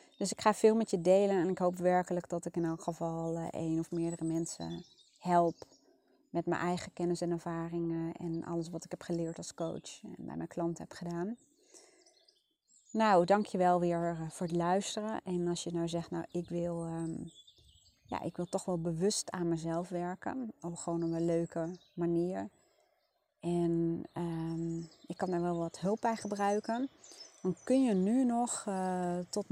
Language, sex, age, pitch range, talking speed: Dutch, female, 30-49, 165-190 Hz, 175 wpm